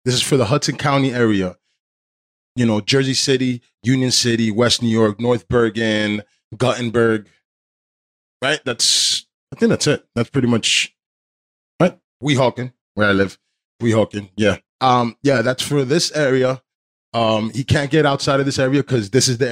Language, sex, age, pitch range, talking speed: English, male, 20-39, 110-140 Hz, 165 wpm